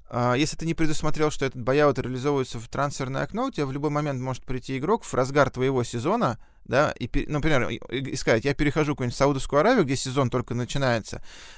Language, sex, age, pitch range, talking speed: Russian, male, 20-39, 115-145 Hz, 190 wpm